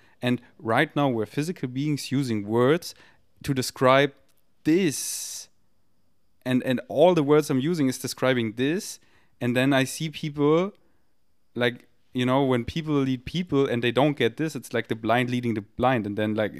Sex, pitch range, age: male, 115-140 Hz, 30-49